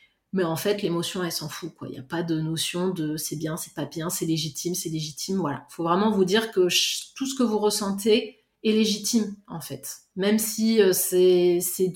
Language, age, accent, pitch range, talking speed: French, 30-49, French, 170-210 Hz, 215 wpm